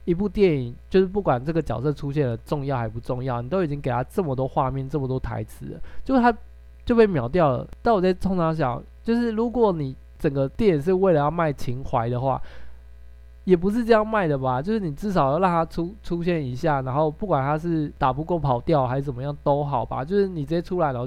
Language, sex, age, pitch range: Chinese, male, 20-39, 130-175 Hz